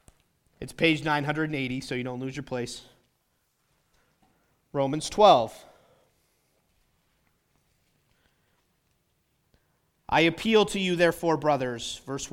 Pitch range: 125-170 Hz